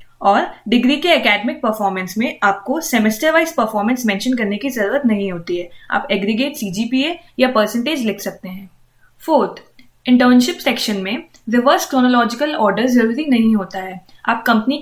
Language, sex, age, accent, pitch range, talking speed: Hindi, female, 20-39, native, 200-265 Hz, 155 wpm